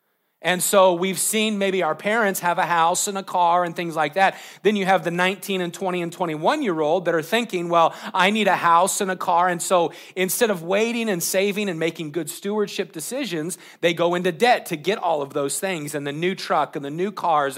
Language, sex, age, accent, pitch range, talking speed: English, male, 40-59, American, 165-205 Hz, 235 wpm